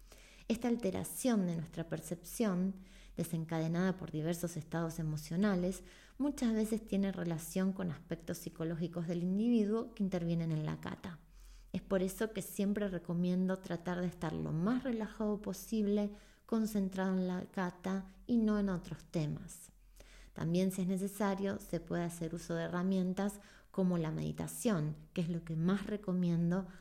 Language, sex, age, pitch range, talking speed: Spanish, female, 20-39, 165-200 Hz, 145 wpm